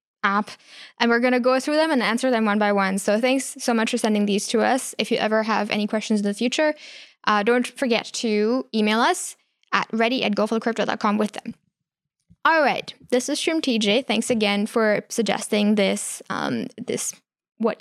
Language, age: English, 10-29